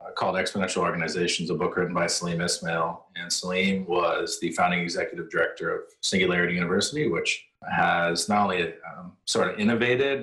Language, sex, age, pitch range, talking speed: English, male, 30-49, 85-110 Hz, 160 wpm